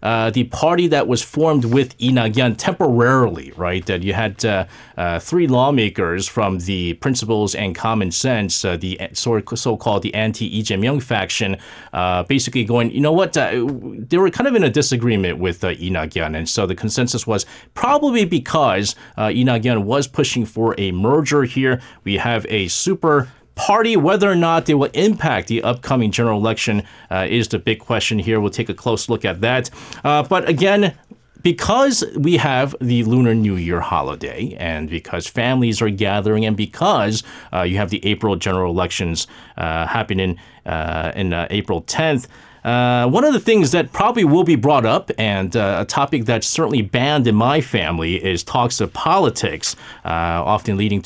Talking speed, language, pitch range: 180 wpm, English, 95-130 Hz